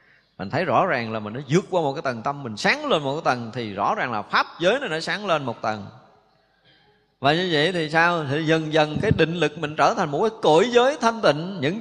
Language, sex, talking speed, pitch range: Vietnamese, male, 265 wpm, 125-175 Hz